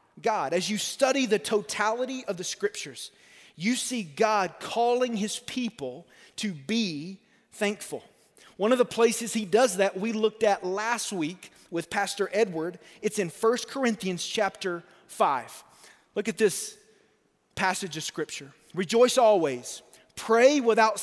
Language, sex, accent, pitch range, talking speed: English, male, American, 175-225 Hz, 140 wpm